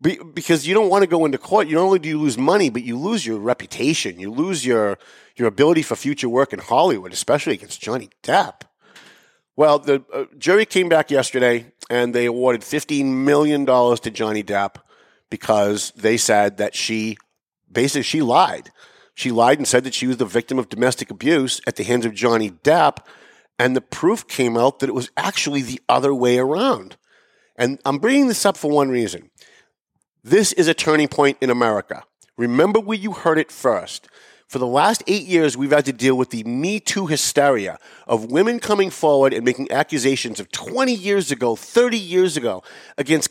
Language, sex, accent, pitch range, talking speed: English, male, American, 125-170 Hz, 190 wpm